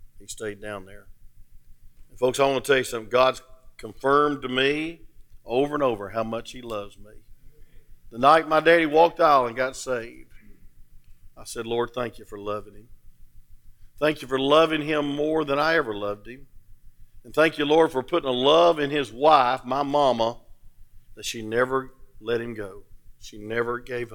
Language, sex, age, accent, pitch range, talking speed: English, male, 50-69, American, 105-140 Hz, 185 wpm